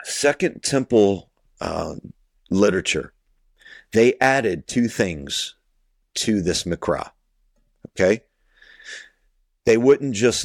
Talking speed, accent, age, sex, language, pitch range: 85 wpm, American, 40-59, male, English, 85-115 Hz